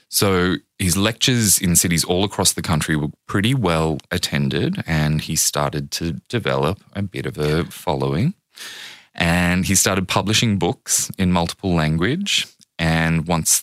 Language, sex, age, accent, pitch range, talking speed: English, male, 20-39, Australian, 70-85 Hz, 145 wpm